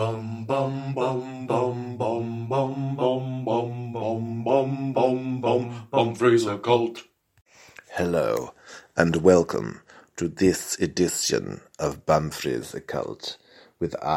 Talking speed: 100 wpm